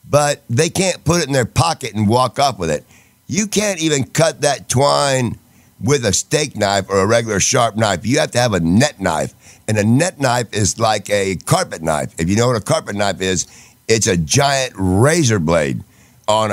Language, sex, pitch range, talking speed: English, male, 105-140 Hz, 210 wpm